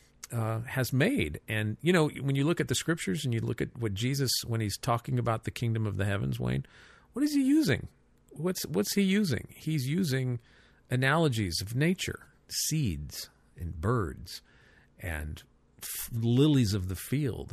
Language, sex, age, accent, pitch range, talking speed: English, male, 50-69, American, 110-140 Hz, 170 wpm